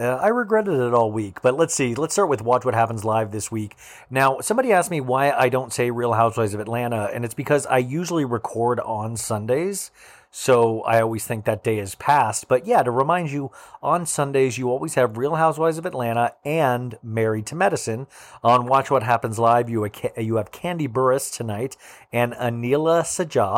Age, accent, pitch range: 40-59, American, 115-145 Hz